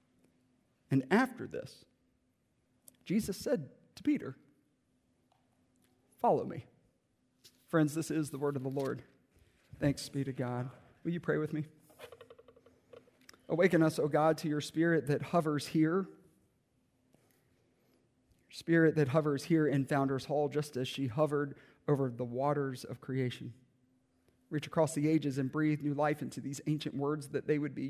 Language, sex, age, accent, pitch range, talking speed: English, male, 40-59, American, 125-150 Hz, 145 wpm